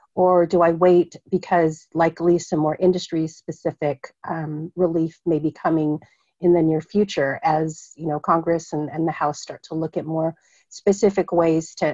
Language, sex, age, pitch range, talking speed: English, female, 40-59, 160-180 Hz, 165 wpm